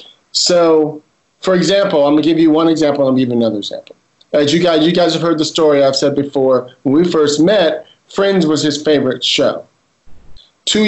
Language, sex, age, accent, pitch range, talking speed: English, male, 40-59, American, 135-160 Hz, 210 wpm